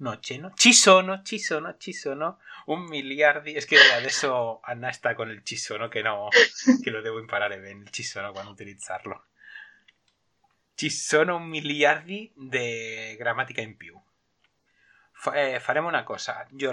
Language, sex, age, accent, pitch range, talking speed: Italian, male, 30-49, Spanish, 115-180 Hz, 145 wpm